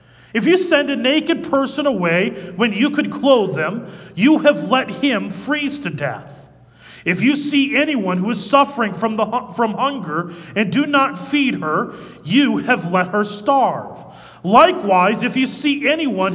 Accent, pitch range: American, 195-275 Hz